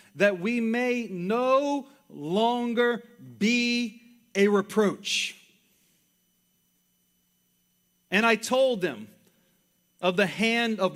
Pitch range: 185-230 Hz